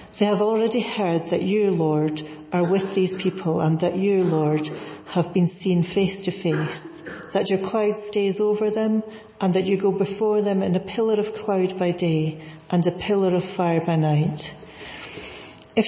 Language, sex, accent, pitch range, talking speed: English, female, British, 160-200 Hz, 180 wpm